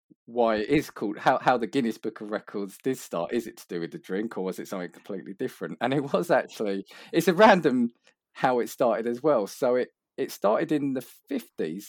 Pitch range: 95-125 Hz